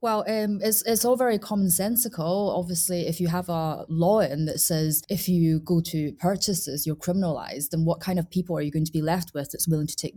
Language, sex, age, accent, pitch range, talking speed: English, female, 20-39, British, 150-180 Hz, 230 wpm